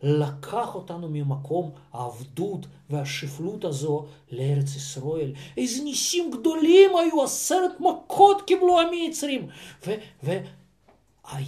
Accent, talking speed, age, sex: native, 110 wpm, 50-69, male